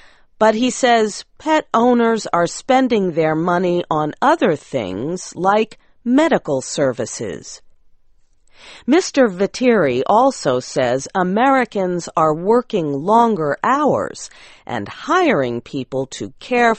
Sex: female